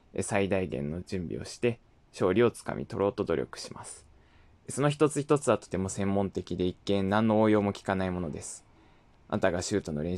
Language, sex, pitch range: Japanese, male, 90-110 Hz